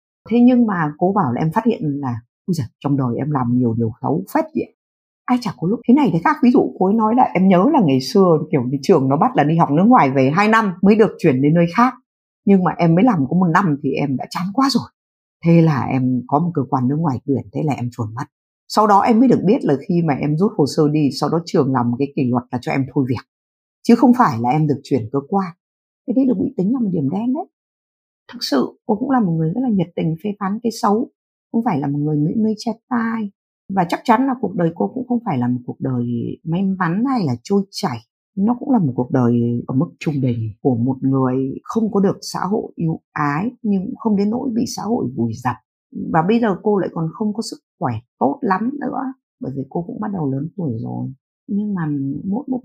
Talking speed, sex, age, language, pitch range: 265 wpm, female, 50-69, Vietnamese, 135-225 Hz